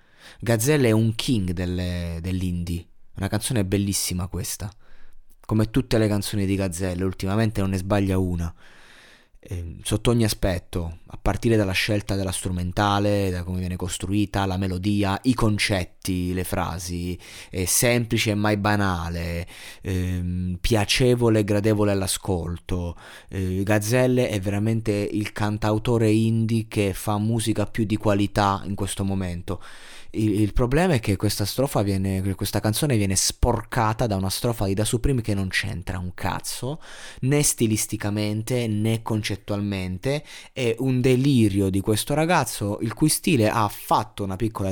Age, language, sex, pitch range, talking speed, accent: 20-39, Italian, male, 95-115 Hz, 140 wpm, native